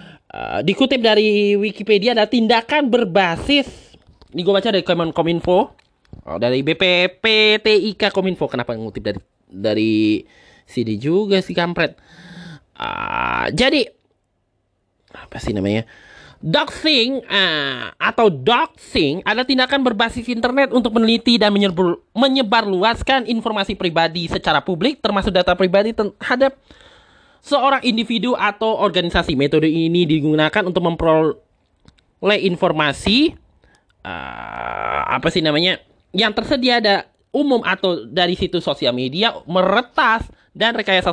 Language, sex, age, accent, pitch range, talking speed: Indonesian, male, 20-39, native, 170-230 Hz, 110 wpm